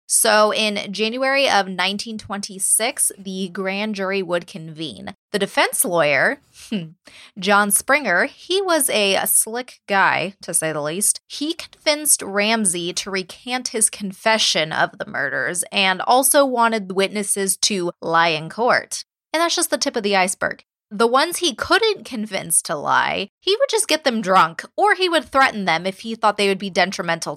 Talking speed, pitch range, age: 165 wpm, 190-240 Hz, 20-39